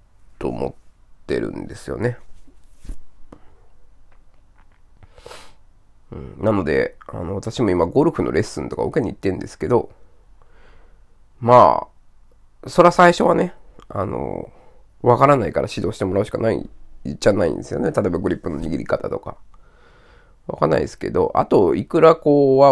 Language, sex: Japanese, male